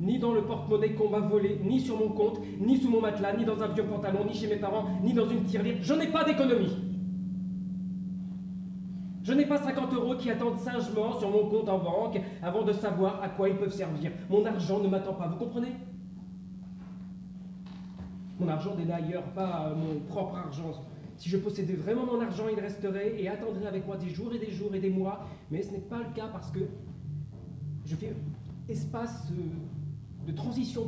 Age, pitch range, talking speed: 30-49, 155-215 Hz, 195 wpm